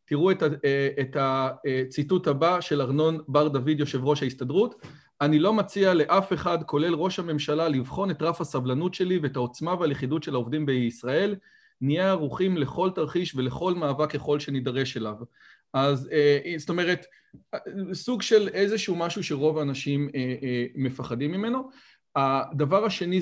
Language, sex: Hebrew, male